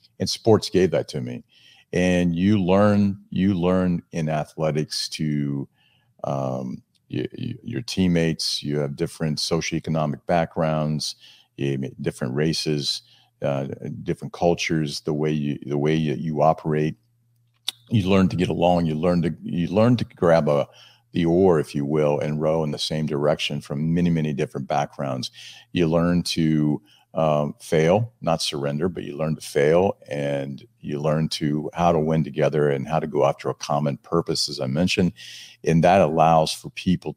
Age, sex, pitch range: 50-69, male, 75-90 Hz